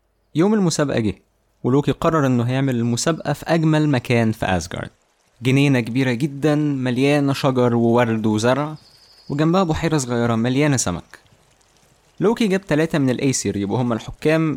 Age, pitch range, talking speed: 20-39, 115-155 Hz, 135 wpm